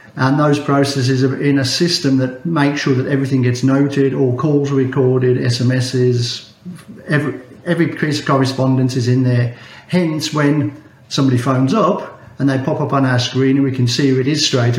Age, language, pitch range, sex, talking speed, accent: 50-69, English, 125-140 Hz, male, 185 wpm, British